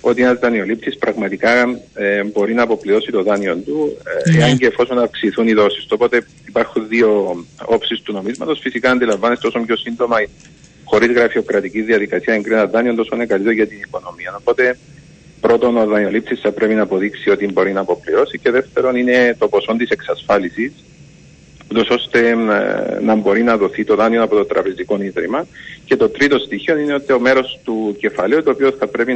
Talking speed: 175 wpm